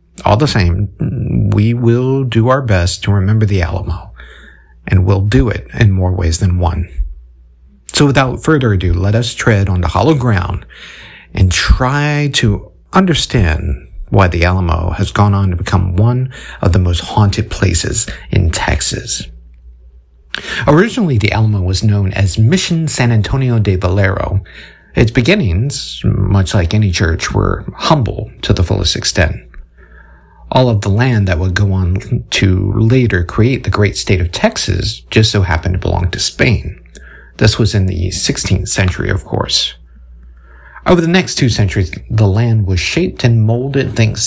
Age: 50-69